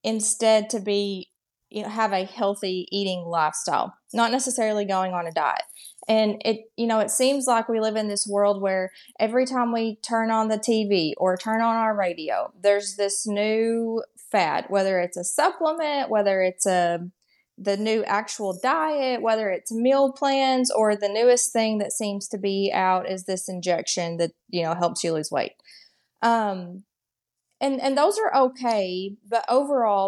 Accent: American